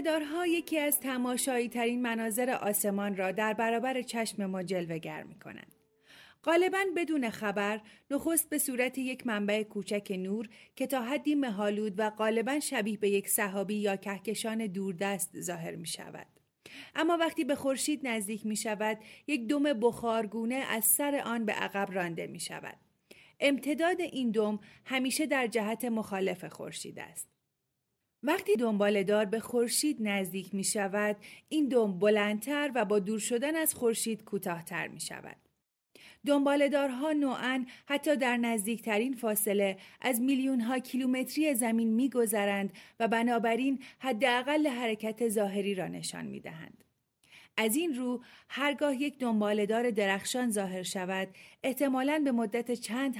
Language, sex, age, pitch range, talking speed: Persian, female, 30-49, 210-270 Hz, 135 wpm